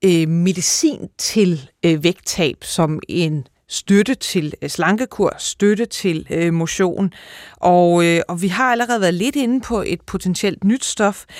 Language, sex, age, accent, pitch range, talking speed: Danish, female, 30-49, native, 170-210 Hz, 125 wpm